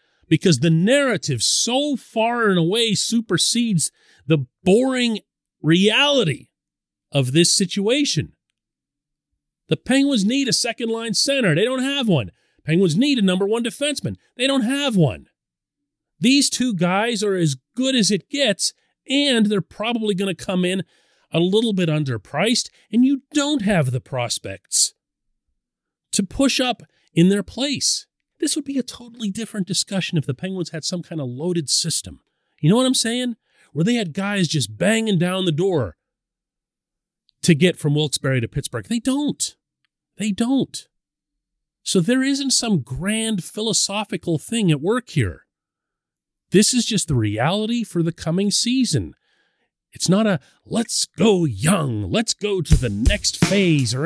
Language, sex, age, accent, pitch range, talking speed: English, male, 40-59, American, 160-235 Hz, 155 wpm